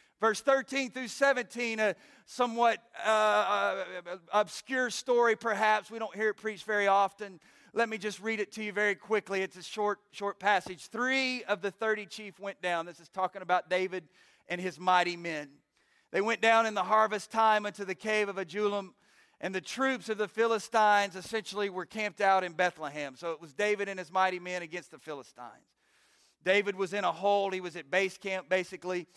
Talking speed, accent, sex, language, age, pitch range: 190 wpm, American, male, English, 40-59, 175-210 Hz